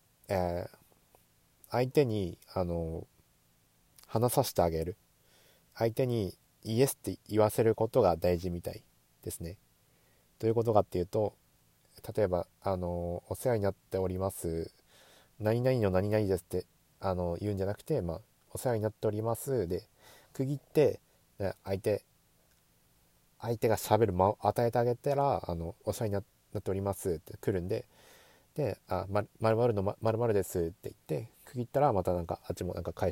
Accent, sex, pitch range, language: native, male, 90-120 Hz, Japanese